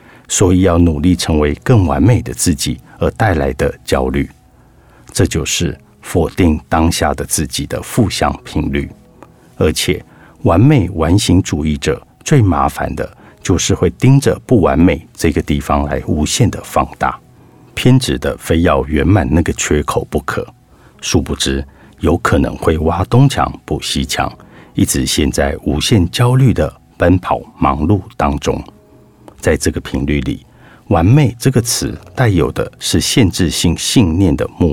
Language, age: Chinese, 50-69